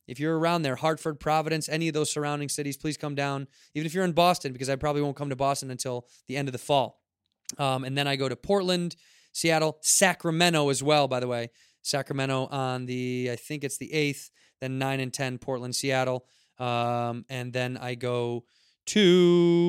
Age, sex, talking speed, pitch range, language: 20-39, male, 200 wpm, 130-155 Hz, English